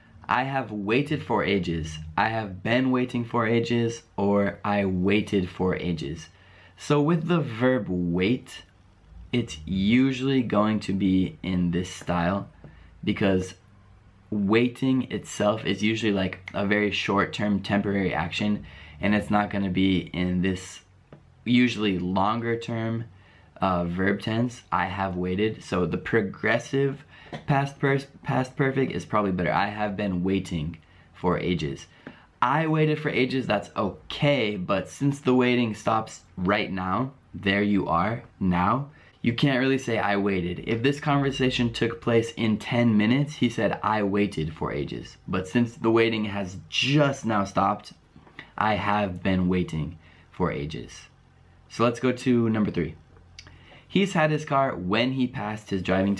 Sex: male